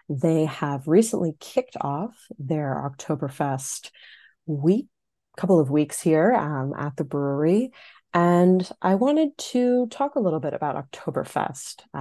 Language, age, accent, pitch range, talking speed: English, 30-49, American, 145-180 Hz, 130 wpm